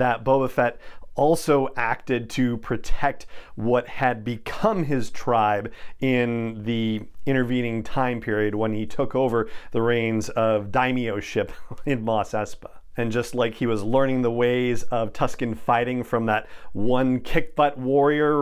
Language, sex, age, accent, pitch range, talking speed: English, male, 40-59, American, 110-135 Hz, 150 wpm